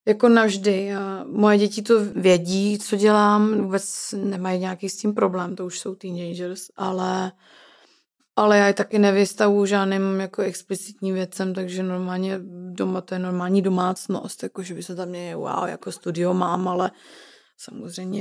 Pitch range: 200-230 Hz